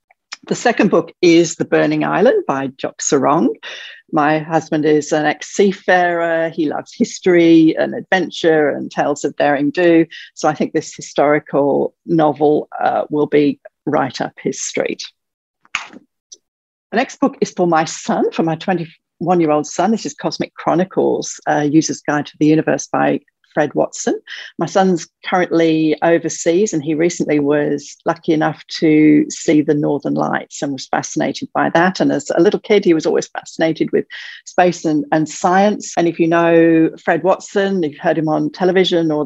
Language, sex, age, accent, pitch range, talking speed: English, female, 50-69, British, 150-175 Hz, 165 wpm